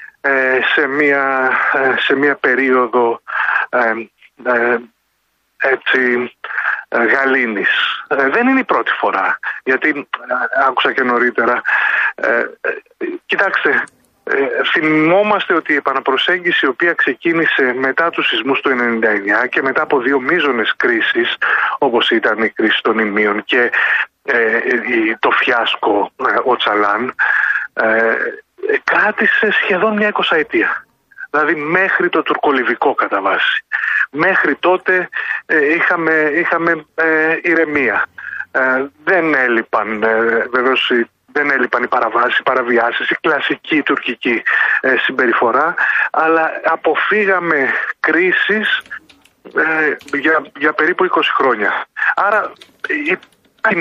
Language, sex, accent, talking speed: Greek, male, native, 110 wpm